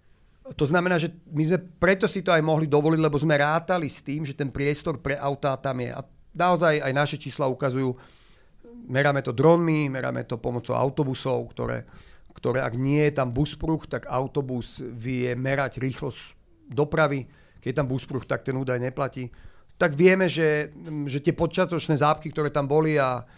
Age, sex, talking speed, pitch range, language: 40-59, male, 175 wpm, 130-160 Hz, Slovak